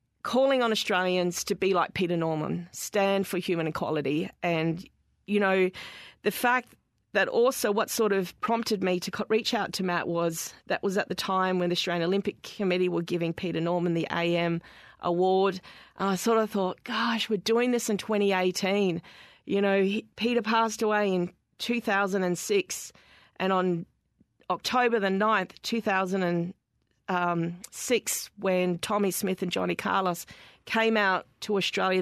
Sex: female